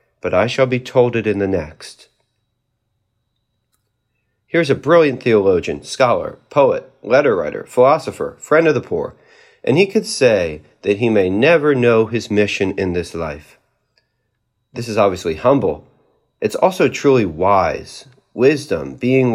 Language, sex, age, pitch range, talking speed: English, male, 40-59, 110-155 Hz, 145 wpm